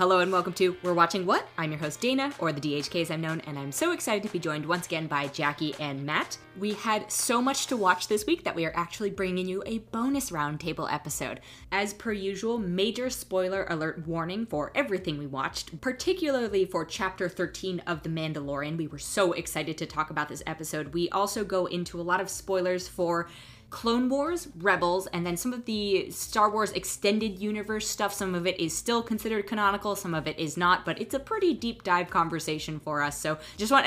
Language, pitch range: English, 155-205 Hz